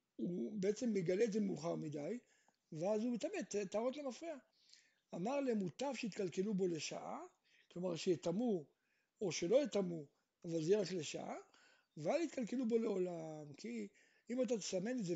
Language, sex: Hebrew, male